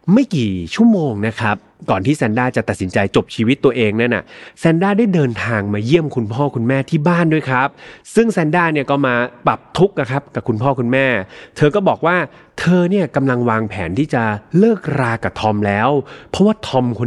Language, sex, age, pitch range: Thai, male, 30-49, 115-155 Hz